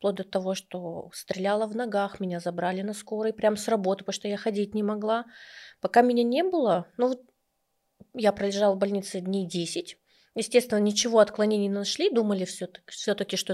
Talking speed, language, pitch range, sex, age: 175 wpm, Russian, 195-245 Hz, female, 20-39